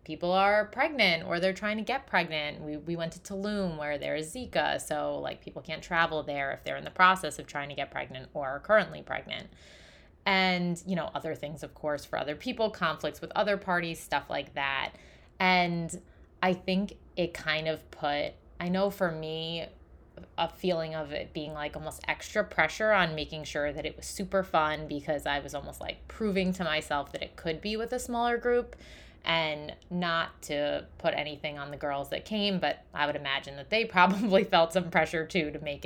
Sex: female